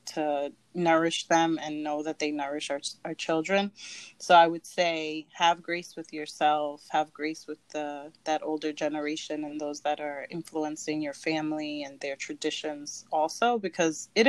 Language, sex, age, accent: English, female, 30-49, American